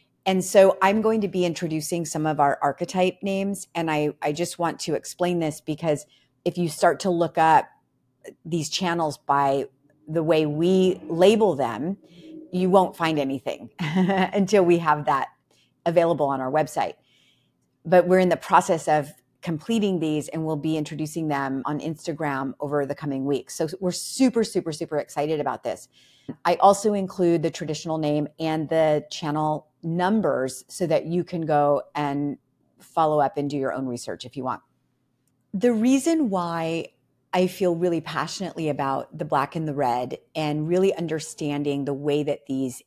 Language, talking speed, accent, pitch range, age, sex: English, 170 wpm, American, 145-180 Hz, 30-49, female